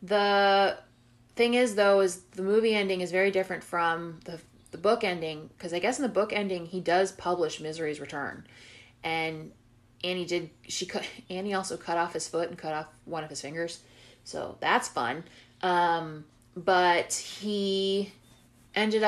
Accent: American